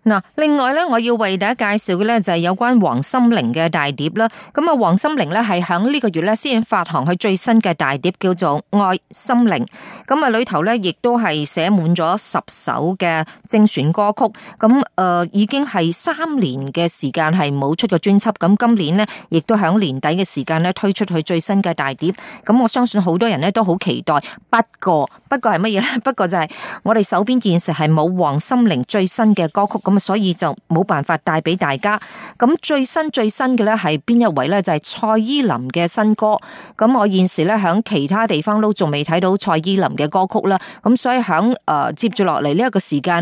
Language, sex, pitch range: Chinese, female, 170-225 Hz